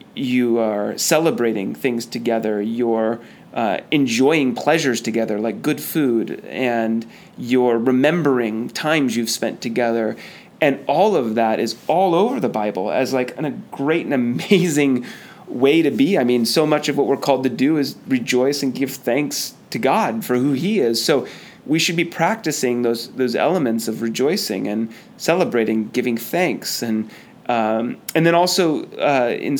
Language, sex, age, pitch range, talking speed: English, male, 30-49, 115-150 Hz, 165 wpm